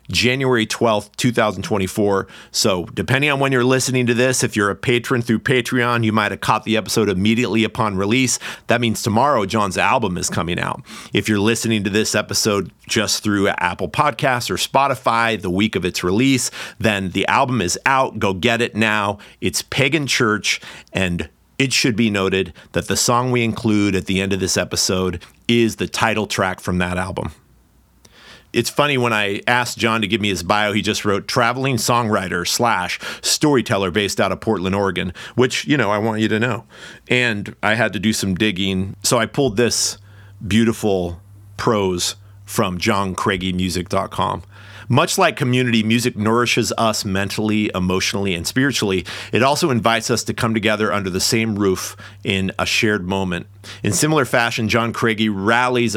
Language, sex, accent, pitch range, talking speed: English, male, American, 100-120 Hz, 175 wpm